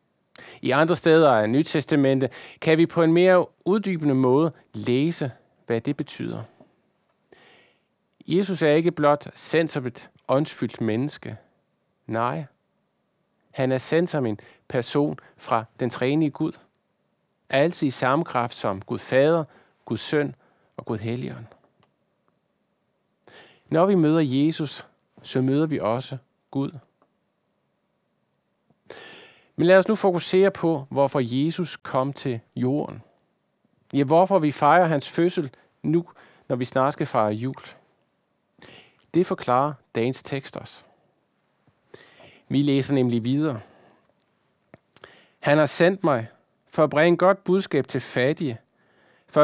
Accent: native